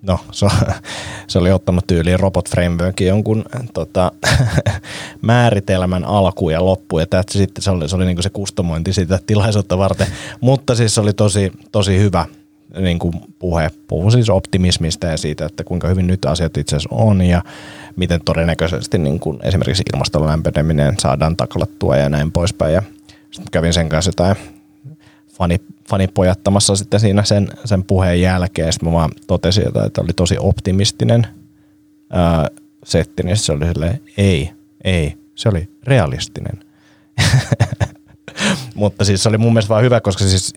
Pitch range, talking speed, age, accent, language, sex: 85-105 Hz, 150 wpm, 30-49, native, Finnish, male